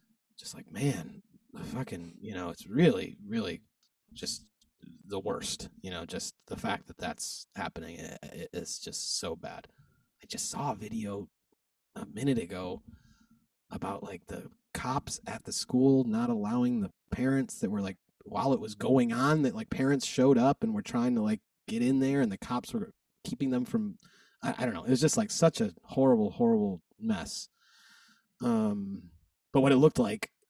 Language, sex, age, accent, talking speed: English, male, 30-49, American, 180 wpm